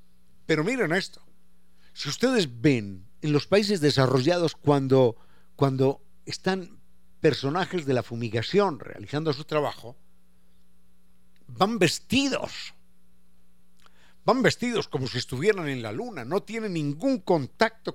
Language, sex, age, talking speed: Spanish, male, 50-69, 115 wpm